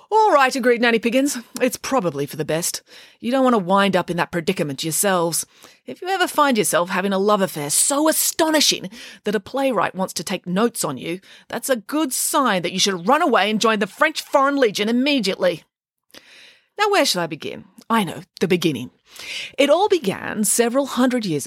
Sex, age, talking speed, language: female, 30-49, 200 wpm, English